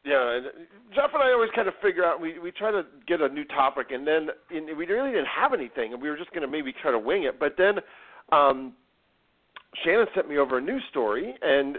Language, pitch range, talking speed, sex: English, 140-205 Hz, 235 wpm, male